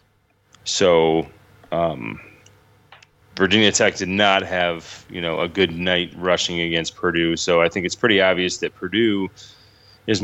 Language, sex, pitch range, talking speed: English, male, 85-100 Hz, 140 wpm